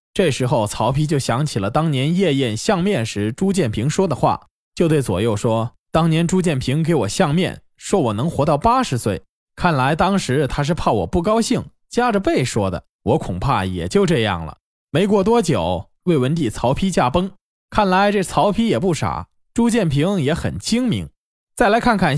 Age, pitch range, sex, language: 20-39, 125-200 Hz, male, Chinese